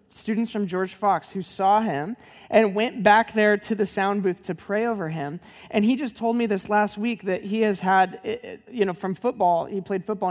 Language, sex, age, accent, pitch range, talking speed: English, male, 20-39, American, 185-220 Hz, 220 wpm